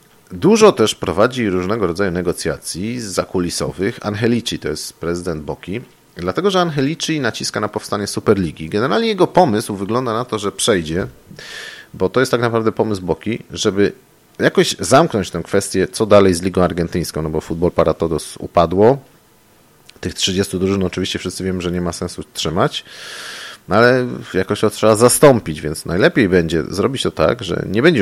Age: 40-59